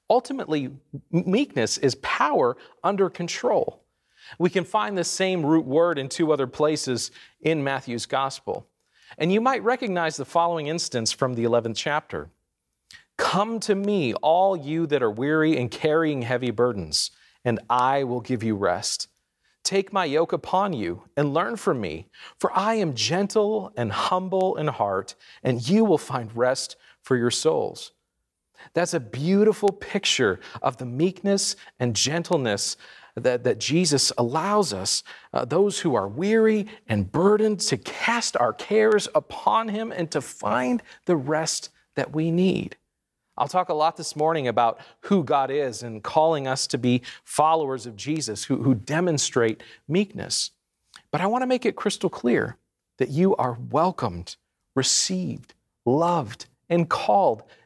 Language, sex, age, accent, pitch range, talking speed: English, male, 40-59, American, 125-185 Hz, 155 wpm